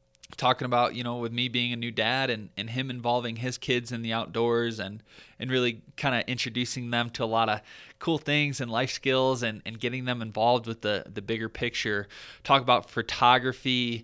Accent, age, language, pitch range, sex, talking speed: American, 20-39, English, 115-130 Hz, male, 205 wpm